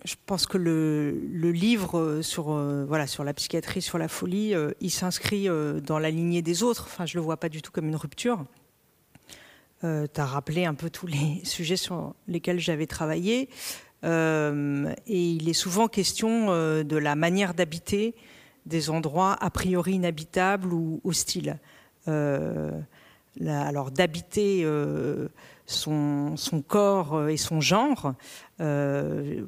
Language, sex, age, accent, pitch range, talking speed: French, female, 50-69, French, 155-185 Hz, 145 wpm